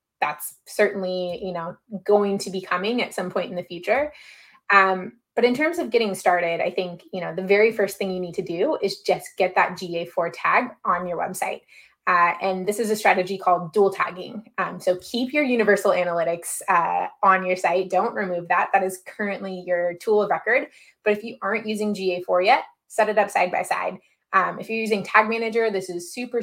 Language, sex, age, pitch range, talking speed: English, female, 20-39, 180-215 Hz, 210 wpm